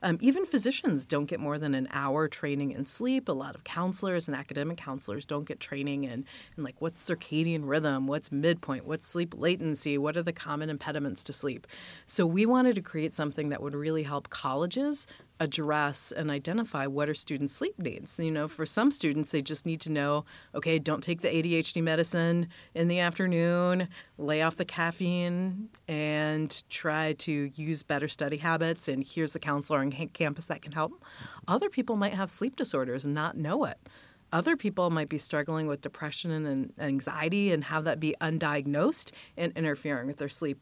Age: 30-49